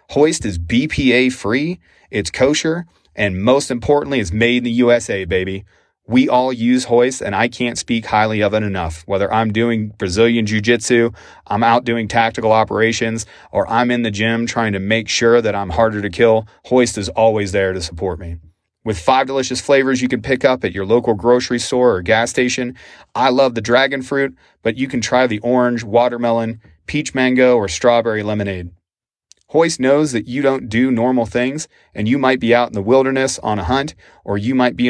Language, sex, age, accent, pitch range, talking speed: English, male, 30-49, American, 105-125 Hz, 195 wpm